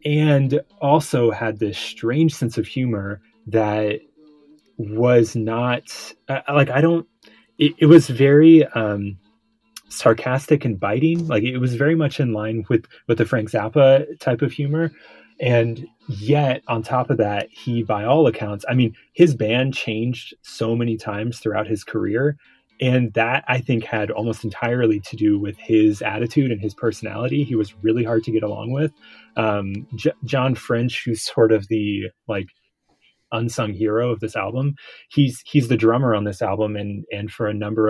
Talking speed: 170 wpm